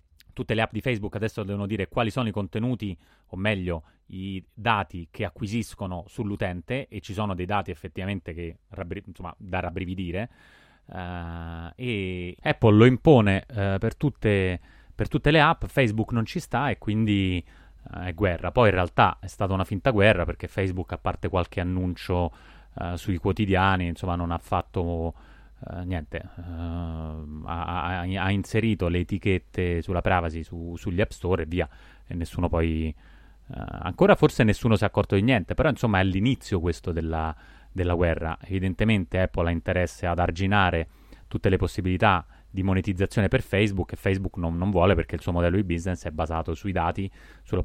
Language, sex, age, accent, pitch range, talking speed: Italian, male, 30-49, native, 85-105 Hz, 170 wpm